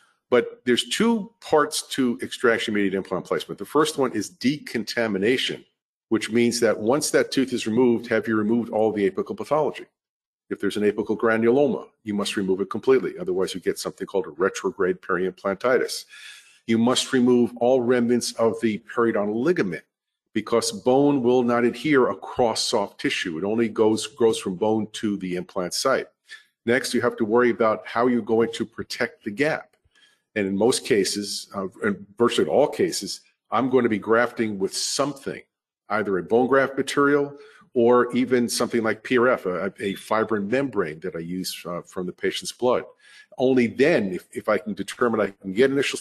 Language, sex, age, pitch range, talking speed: English, male, 50-69, 110-140 Hz, 175 wpm